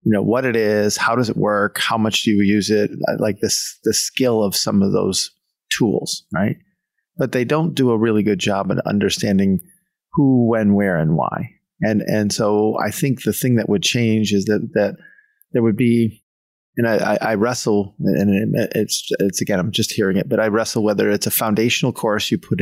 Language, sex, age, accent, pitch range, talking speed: English, male, 30-49, American, 100-120 Hz, 210 wpm